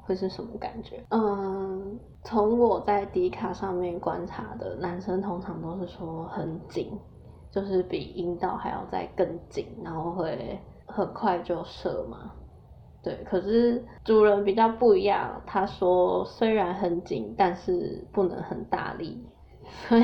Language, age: Chinese, 10-29